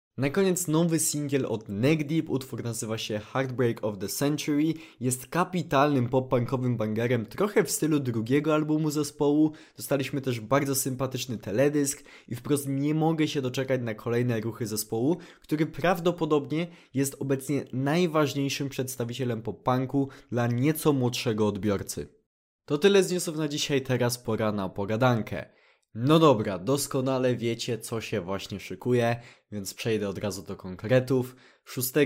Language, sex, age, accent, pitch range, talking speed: Polish, male, 20-39, native, 110-145 Hz, 140 wpm